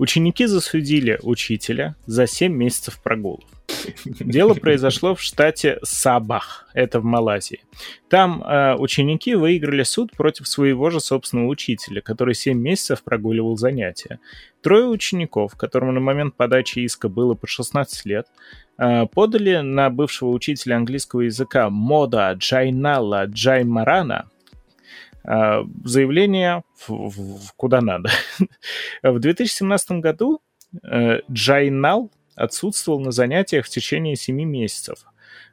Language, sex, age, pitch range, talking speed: Russian, male, 20-39, 115-150 Hz, 115 wpm